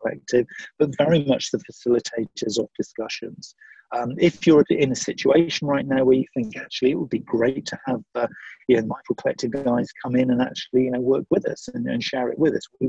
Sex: male